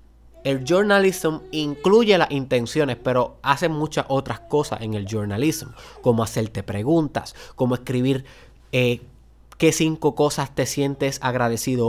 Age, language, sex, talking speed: 20-39, Spanish, male, 125 wpm